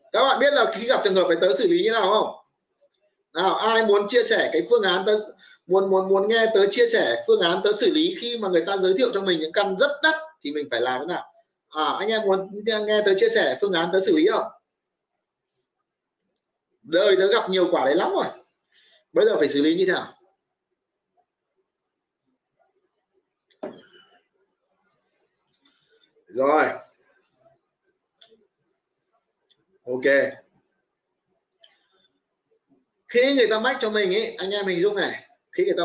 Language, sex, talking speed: Vietnamese, male, 170 wpm